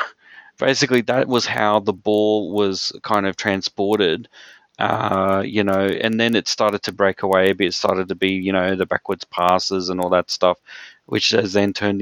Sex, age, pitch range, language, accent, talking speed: male, 30-49, 95-110 Hz, English, Australian, 185 wpm